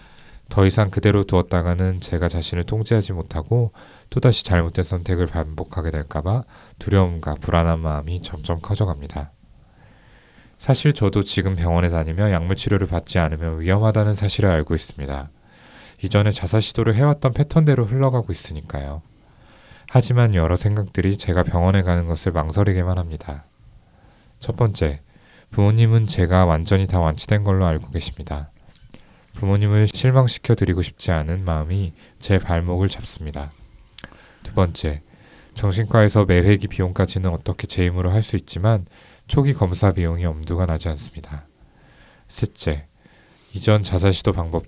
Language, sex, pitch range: Korean, male, 85-105 Hz